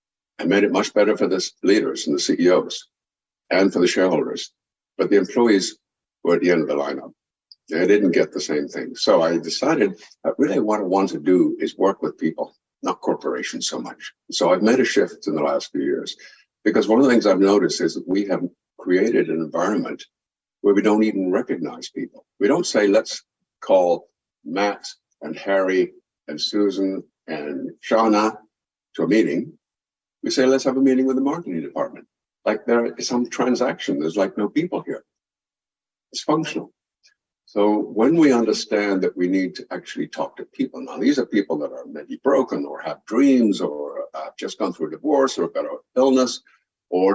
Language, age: English, 60-79